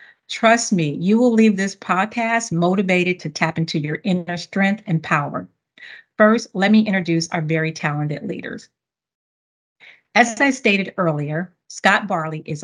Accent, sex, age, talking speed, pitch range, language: American, female, 40-59, 145 wpm, 165-210 Hz, English